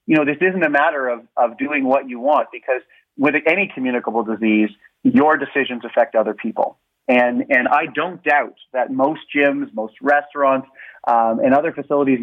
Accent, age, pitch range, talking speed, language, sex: American, 30-49, 125-150 Hz, 175 wpm, English, male